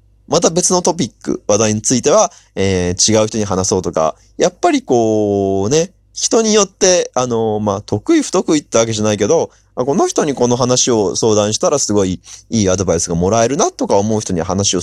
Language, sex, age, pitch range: Japanese, male, 20-39, 100-130 Hz